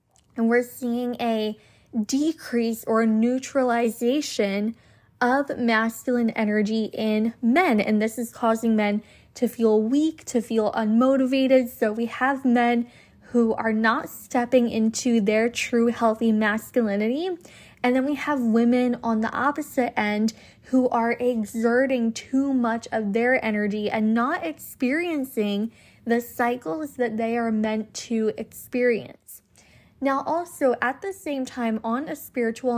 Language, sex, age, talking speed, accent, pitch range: English, female, 10-29, 135 wpm, American, 225-260 Hz